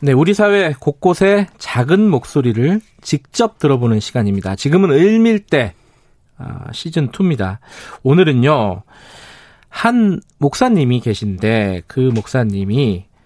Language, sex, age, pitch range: Korean, male, 40-59, 120-185 Hz